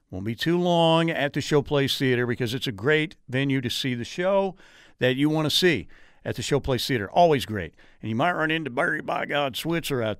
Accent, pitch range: American, 125-155 Hz